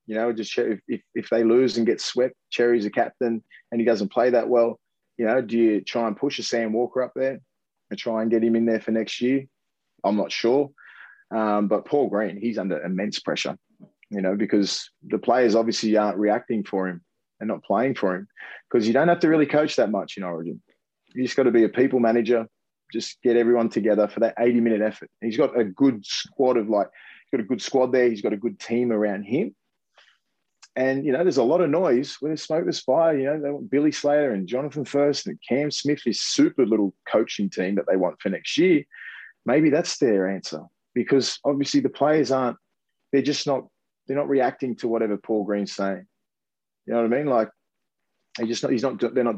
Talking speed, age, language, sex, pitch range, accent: 225 wpm, 20-39, English, male, 110-135 Hz, Australian